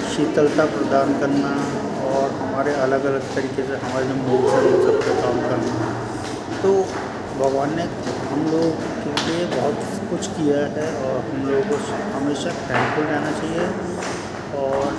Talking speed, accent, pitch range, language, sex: 150 wpm, native, 125-145 Hz, Hindi, male